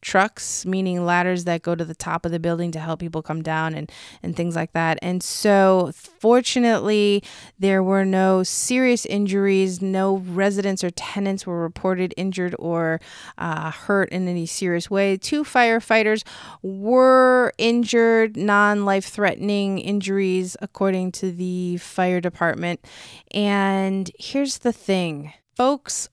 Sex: female